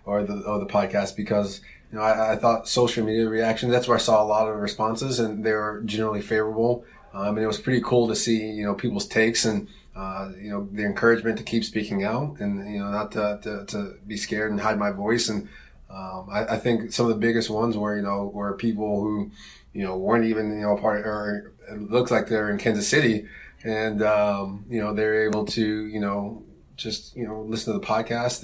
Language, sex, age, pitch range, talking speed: English, male, 20-39, 105-115 Hz, 230 wpm